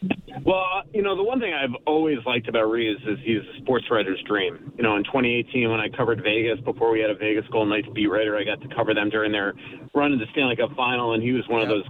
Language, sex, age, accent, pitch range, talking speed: English, male, 30-49, American, 110-130 Hz, 265 wpm